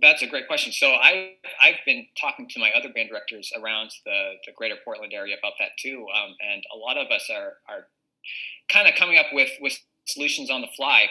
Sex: male